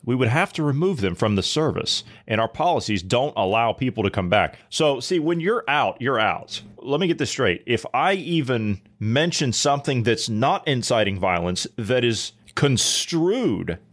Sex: male